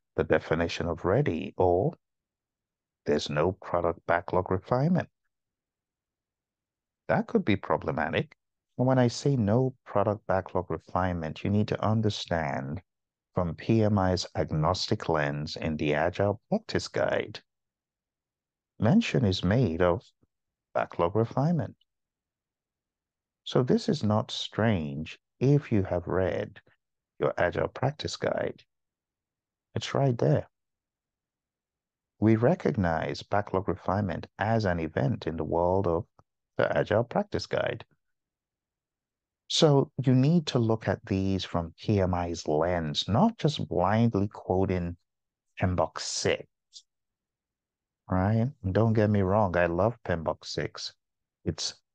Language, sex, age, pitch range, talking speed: English, male, 50-69, 85-110 Hz, 115 wpm